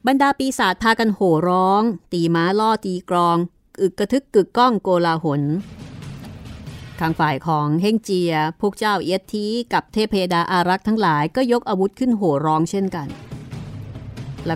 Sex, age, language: female, 30-49, Thai